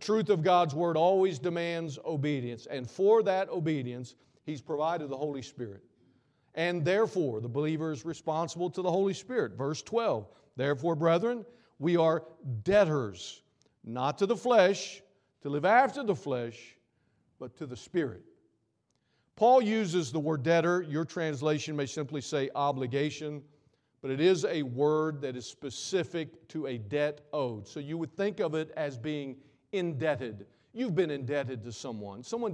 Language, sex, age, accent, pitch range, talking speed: English, male, 50-69, American, 140-190 Hz, 155 wpm